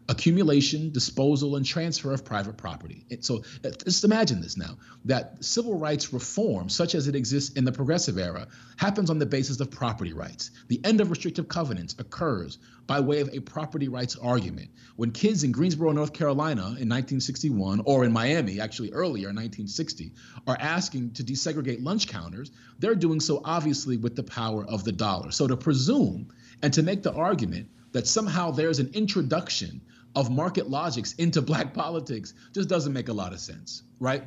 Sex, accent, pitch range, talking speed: male, American, 115-155 Hz, 180 wpm